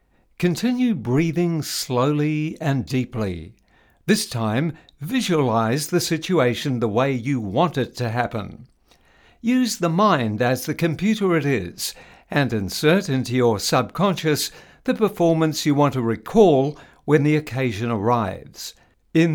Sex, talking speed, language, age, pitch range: male, 125 wpm, English, 60-79, 120-175 Hz